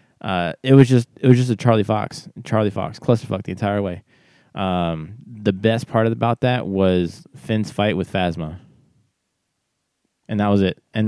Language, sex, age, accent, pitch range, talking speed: English, male, 20-39, American, 85-105 Hz, 175 wpm